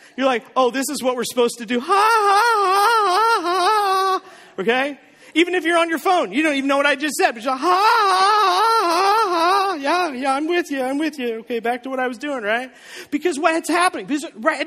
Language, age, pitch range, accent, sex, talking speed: English, 40-59, 220-315 Hz, American, male, 240 wpm